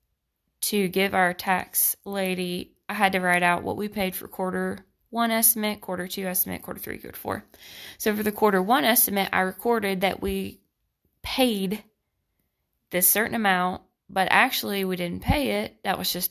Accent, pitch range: American, 180-215 Hz